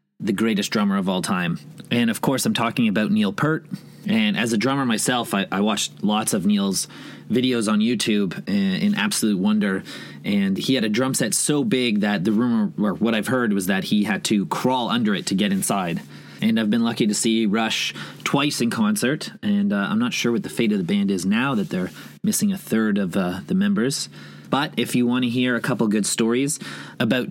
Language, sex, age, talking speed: English, male, 30-49, 220 wpm